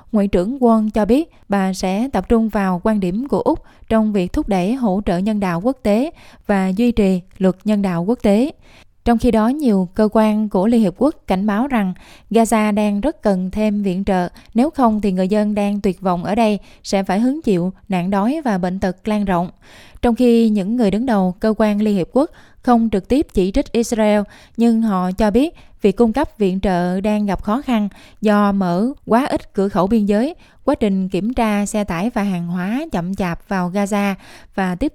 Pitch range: 190-230 Hz